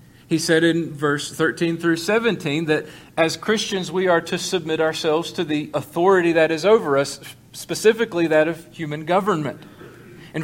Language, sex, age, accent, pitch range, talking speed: English, male, 40-59, American, 150-195 Hz, 160 wpm